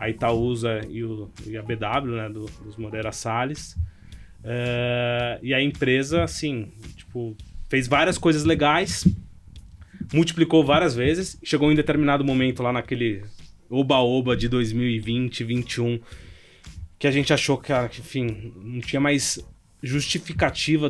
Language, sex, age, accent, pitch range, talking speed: Portuguese, male, 20-39, Brazilian, 115-140 Hz, 130 wpm